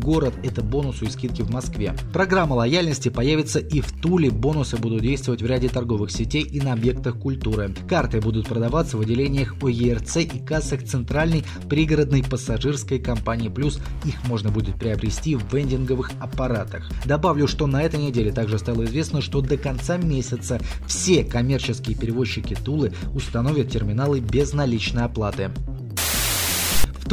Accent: native